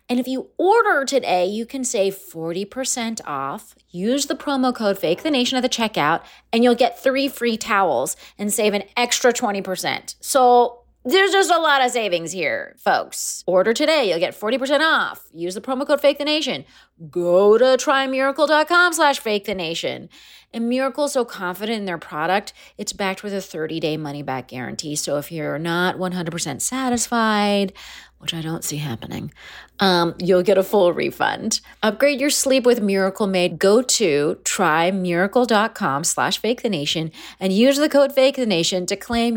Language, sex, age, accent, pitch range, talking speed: English, female, 30-49, American, 180-260 Hz, 160 wpm